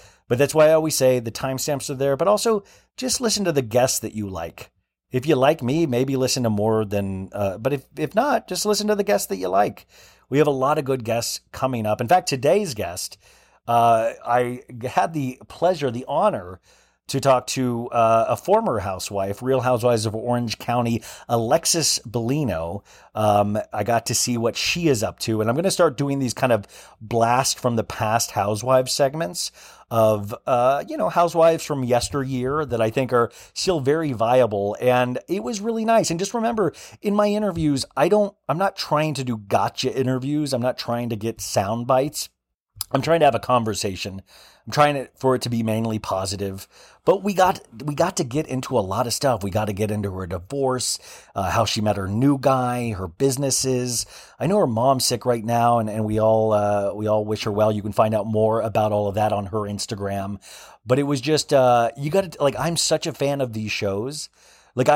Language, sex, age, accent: English, male, 30-49, American